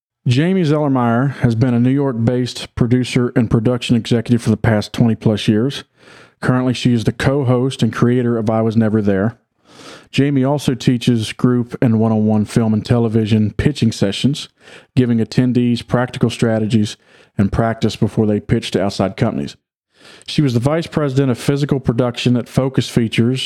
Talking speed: 160 wpm